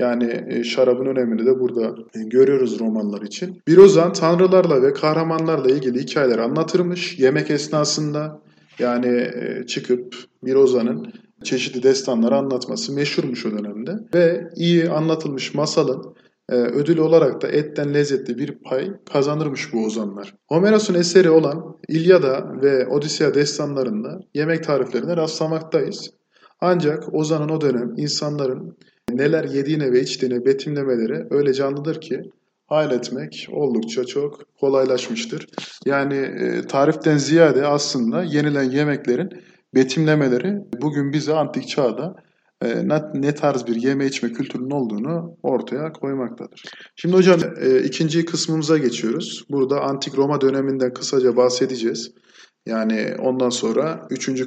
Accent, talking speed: native, 110 wpm